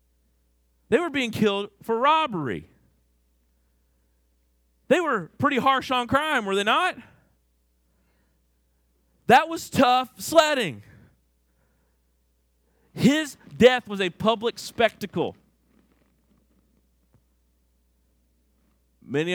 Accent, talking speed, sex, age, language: American, 80 wpm, male, 40-59, English